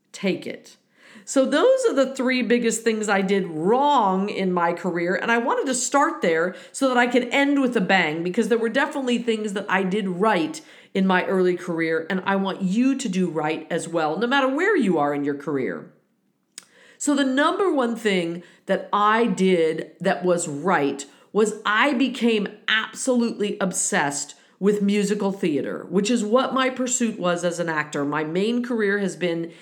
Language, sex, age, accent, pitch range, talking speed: English, female, 50-69, American, 190-255 Hz, 190 wpm